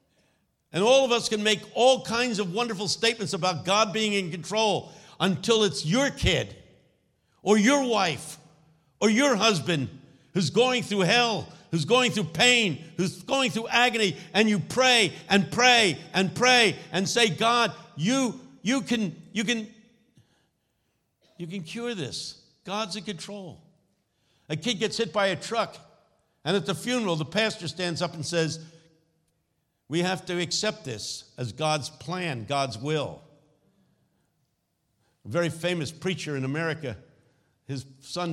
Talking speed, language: 150 wpm, English